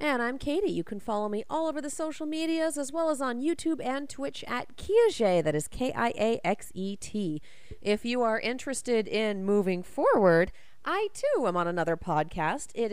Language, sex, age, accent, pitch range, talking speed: English, female, 30-49, American, 205-280 Hz, 175 wpm